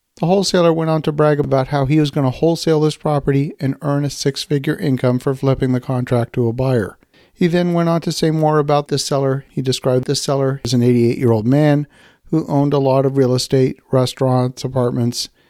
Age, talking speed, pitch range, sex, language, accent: 50-69, 210 wpm, 130-155 Hz, male, English, American